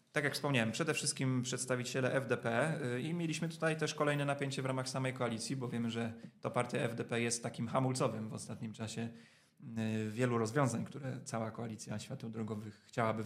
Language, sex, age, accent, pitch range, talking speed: Polish, male, 30-49, native, 115-140 Hz, 165 wpm